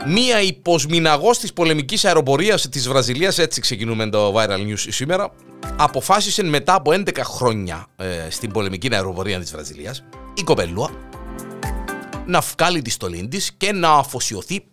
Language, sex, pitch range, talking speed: Greek, male, 110-165 Hz, 130 wpm